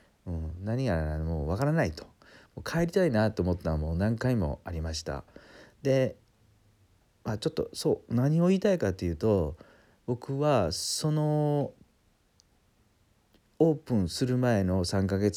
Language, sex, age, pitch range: Japanese, male, 40-59, 90-130 Hz